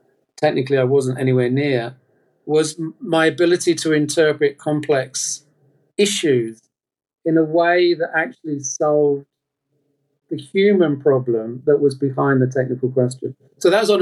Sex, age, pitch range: male, 40-59, 130-155 Hz